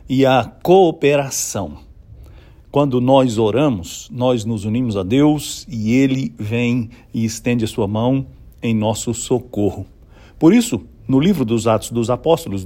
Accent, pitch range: Brazilian, 110-150 Hz